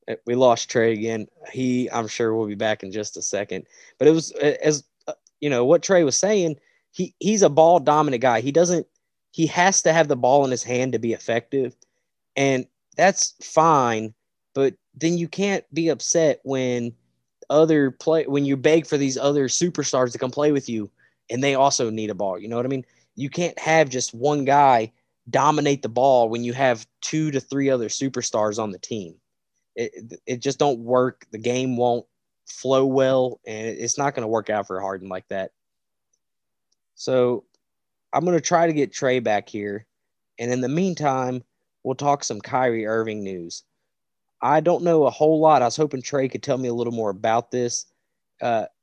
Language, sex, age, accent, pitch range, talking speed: English, male, 20-39, American, 115-150 Hz, 195 wpm